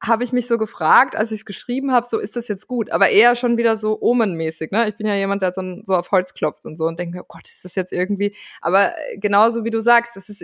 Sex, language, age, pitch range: female, German, 20-39, 190-225 Hz